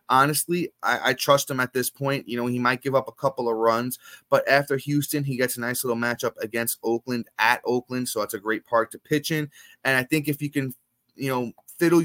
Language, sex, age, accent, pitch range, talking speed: English, male, 20-39, American, 110-135 Hz, 240 wpm